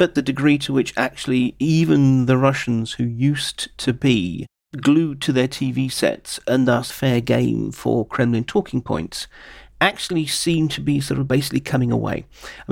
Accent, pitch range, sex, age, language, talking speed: British, 130-170 Hz, male, 40-59, English, 170 wpm